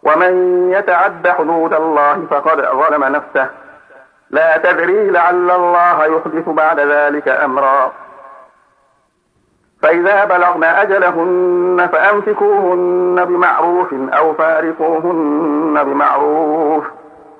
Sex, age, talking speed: male, 50-69, 80 wpm